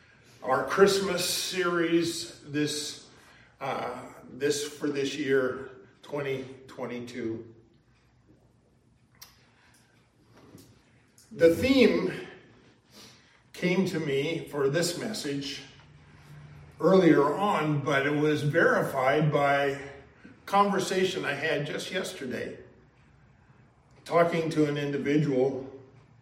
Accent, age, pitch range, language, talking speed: American, 50-69, 125-150 Hz, English, 80 wpm